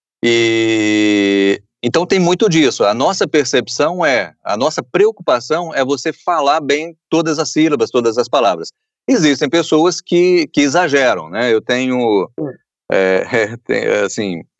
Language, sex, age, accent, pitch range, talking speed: Portuguese, male, 40-59, Brazilian, 130-175 Hz, 125 wpm